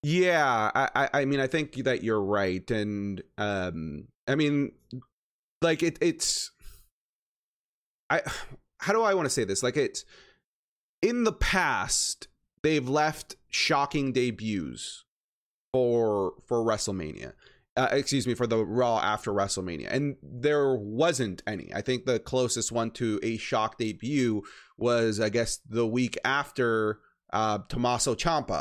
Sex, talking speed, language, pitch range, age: male, 140 wpm, English, 110-145 Hz, 30-49